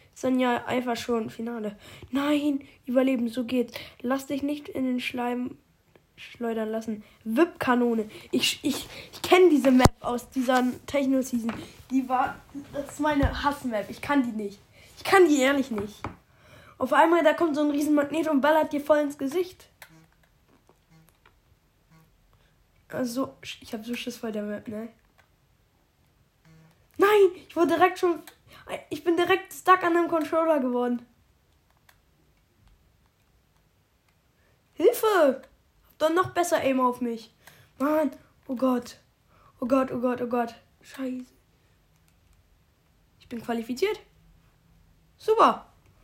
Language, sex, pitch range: German, female, 235-300 Hz